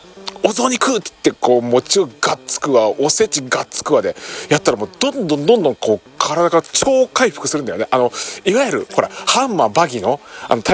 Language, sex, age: Japanese, male, 40-59